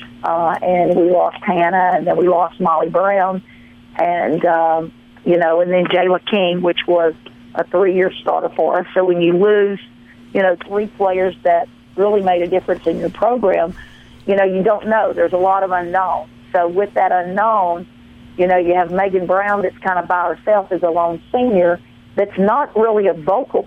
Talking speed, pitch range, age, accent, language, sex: 195 wpm, 175-205 Hz, 50-69, American, English, female